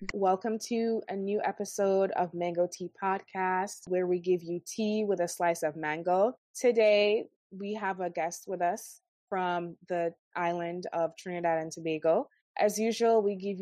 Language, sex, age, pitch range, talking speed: English, female, 20-39, 165-200 Hz, 165 wpm